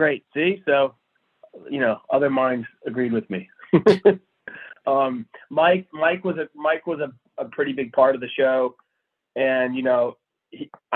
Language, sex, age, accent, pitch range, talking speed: English, male, 30-49, American, 115-140 Hz, 160 wpm